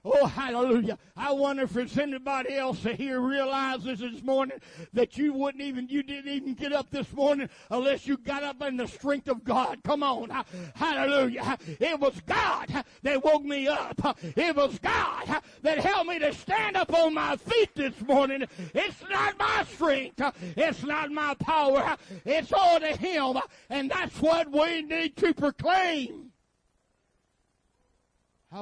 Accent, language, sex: American, English, male